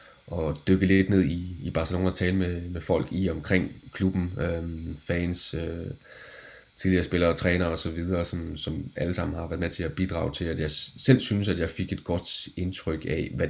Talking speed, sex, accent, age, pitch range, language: 185 wpm, male, native, 30-49, 80-95 Hz, Danish